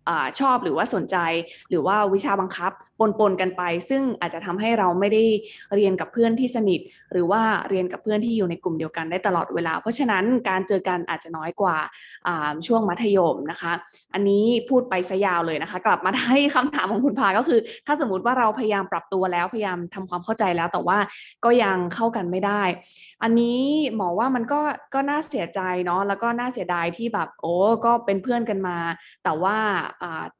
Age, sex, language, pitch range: 20-39, female, Thai, 180-235 Hz